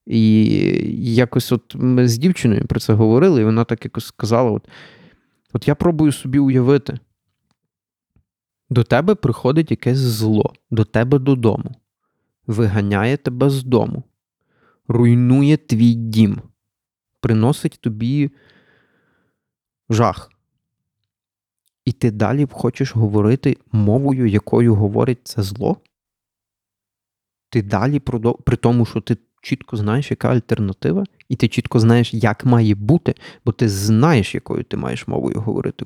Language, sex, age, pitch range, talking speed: Ukrainian, male, 30-49, 110-135 Hz, 125 wpm